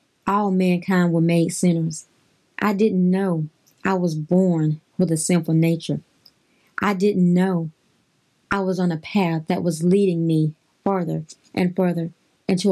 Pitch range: 165-195 Hz